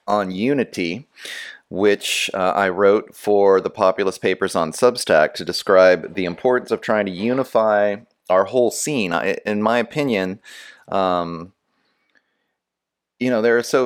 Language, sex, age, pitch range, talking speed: English, male, 30-49, 95-125 Hz, 145 wpm